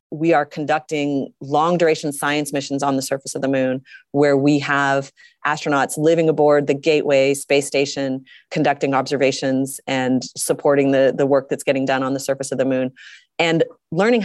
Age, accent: 30-49, American